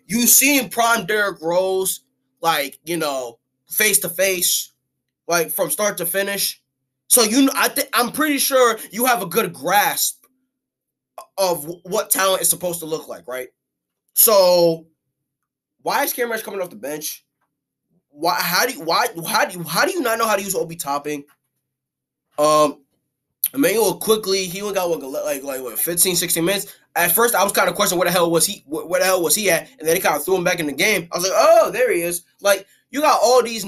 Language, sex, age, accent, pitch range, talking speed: English, male, 20-39, American, 160-210 Hz, 210 wpm